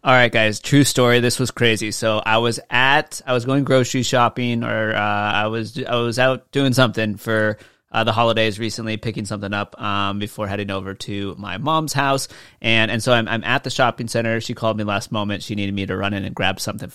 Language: English